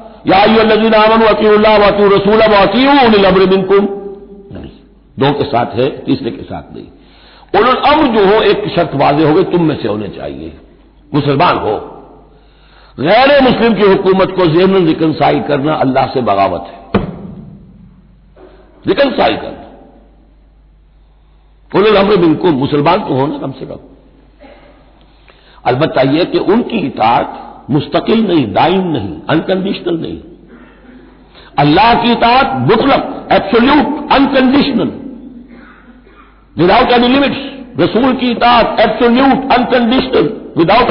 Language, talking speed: Hindi, 105 wpm